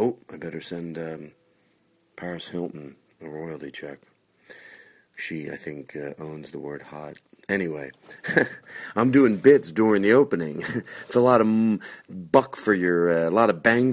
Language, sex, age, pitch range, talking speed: English, male, 40-59, 80-110 Hz, 165 wpm